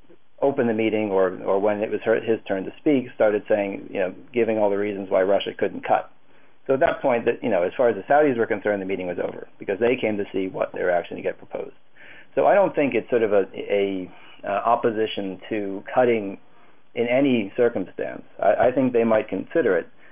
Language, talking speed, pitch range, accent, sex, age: English, 230 wpm, 95-120 Hz, American, male, 40-59